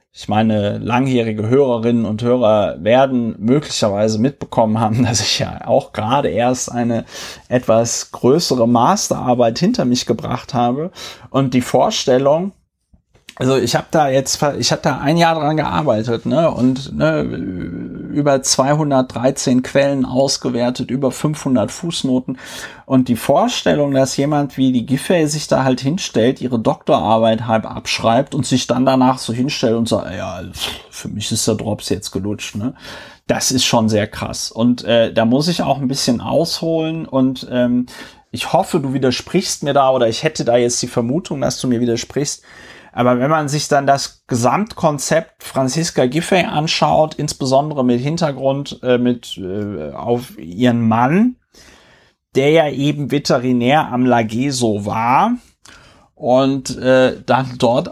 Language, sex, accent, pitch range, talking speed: German, male, German, 120-140 Hz, 150 wpm